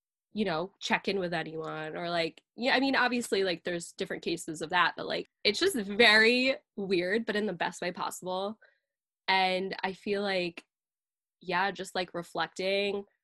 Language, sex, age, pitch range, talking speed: English, female, 10-29, 175-225 Hz, 170 wpm